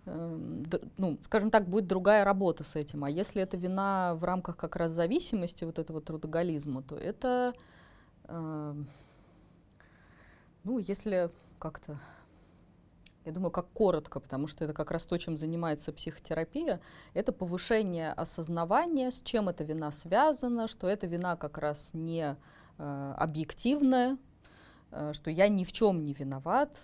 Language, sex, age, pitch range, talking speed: Russian, female, 20-39, 155-195 Hz, 140 wpm